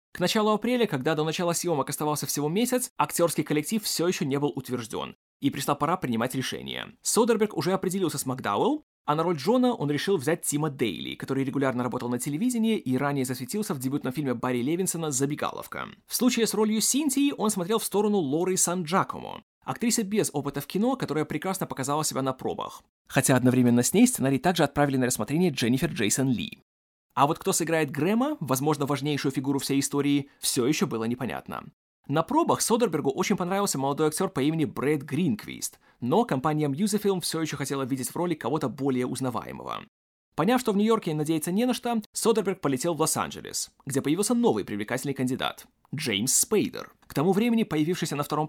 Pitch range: 140-195 Hz